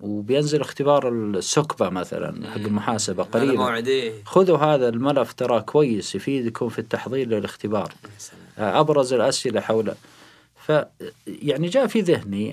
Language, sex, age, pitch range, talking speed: Arabic, male, 40-59, 110-150 Hz, 110 wpm